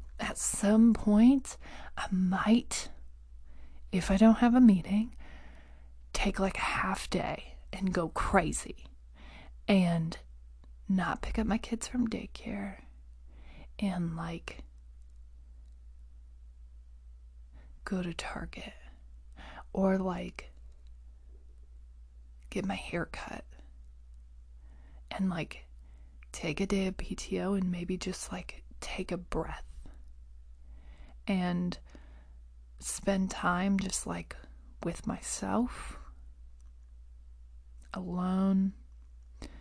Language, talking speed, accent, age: English, 90 wpm, American, 20-39